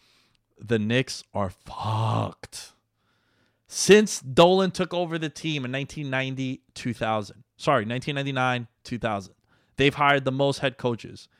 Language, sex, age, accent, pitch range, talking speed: English, male, 30-49, American, 110-130 Hz, 115 wpm